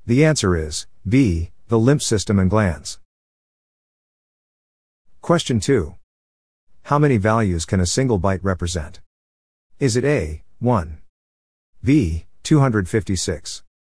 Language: English